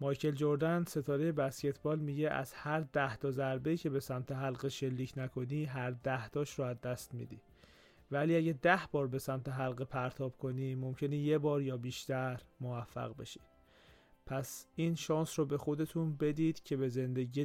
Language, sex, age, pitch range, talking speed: Persian, male, 30-49, 130-160 Hz, 160 wpm